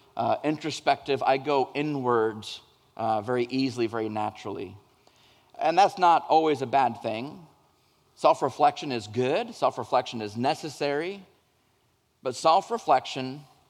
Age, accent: 40-59, American